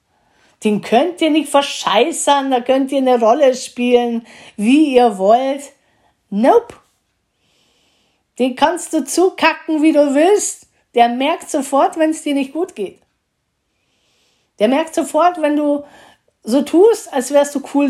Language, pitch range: German, 185-280 Hz